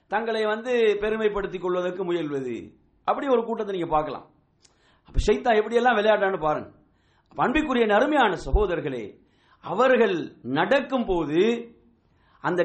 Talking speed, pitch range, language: 105 wpm, 160-250 Hz, English